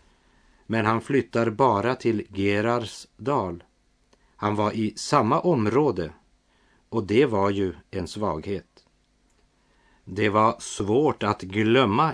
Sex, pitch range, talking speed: male, 95-115 Hz, 115 wpm